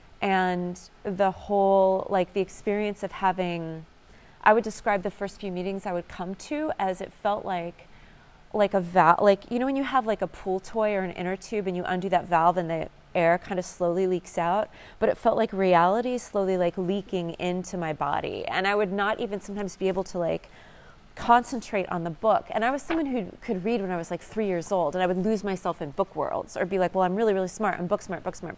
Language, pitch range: English, 180-210 Hz